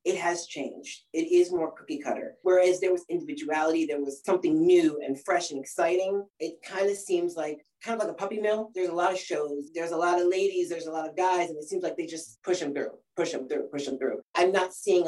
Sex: female